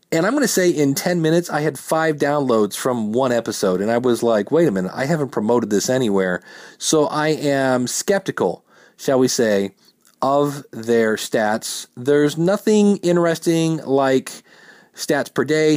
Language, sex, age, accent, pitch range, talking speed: English, male, 40-59, American, 125-170 Hz, 165 wpm